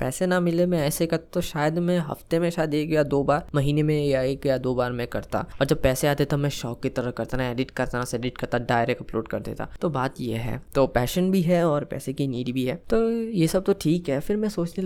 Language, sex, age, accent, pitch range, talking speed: Hindi, female, 20-39, native, 125-165 Hz, 275 wpm